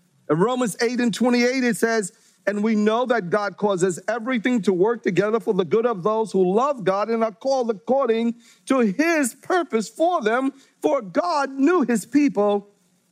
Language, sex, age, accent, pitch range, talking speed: English, male, 40-59, American, 195-265 Hz, 180 wpm